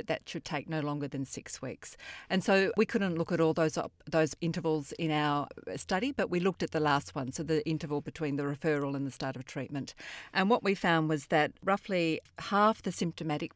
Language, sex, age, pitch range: English, female, 40-59, 150-175 Hz